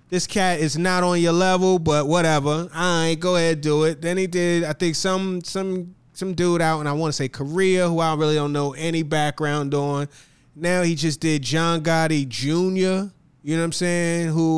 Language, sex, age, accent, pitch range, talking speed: English, male, 20-39, American, 135-180 Hz, 215 wpm